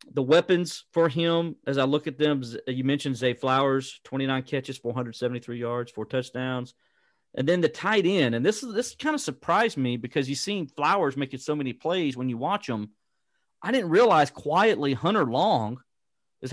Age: 40-59